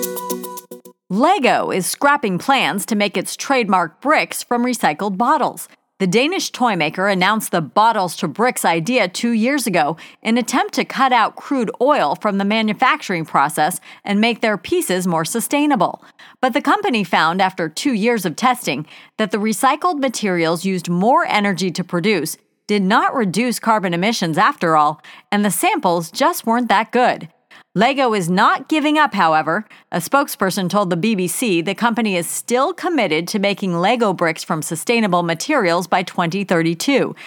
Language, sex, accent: English, female, American